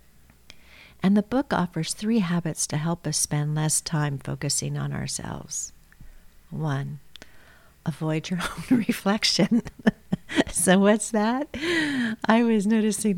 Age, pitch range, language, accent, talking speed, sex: 50-69, 150-190 Hz, English, American, 120 wpm, female